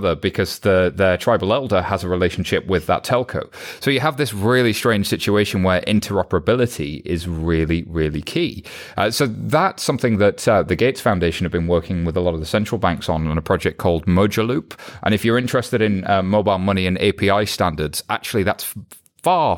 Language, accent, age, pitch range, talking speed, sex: English, British, 30-49, 85-105 Hz, 200 wpm, male